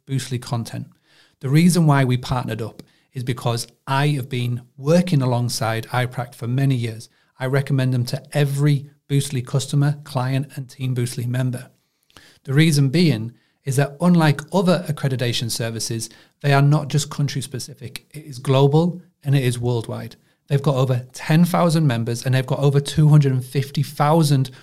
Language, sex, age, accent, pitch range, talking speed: English, male, 40-59, British, 125-150 Hz, 150 wpm